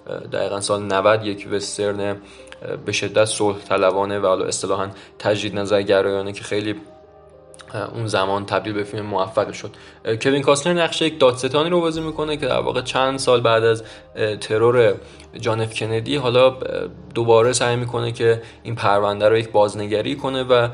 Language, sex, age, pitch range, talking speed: Persian, male, 20-39, 110-135 Hz, 160 wpm